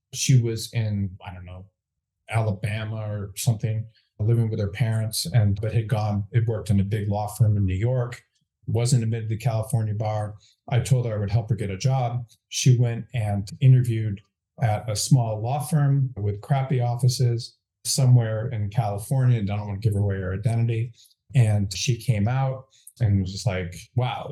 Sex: male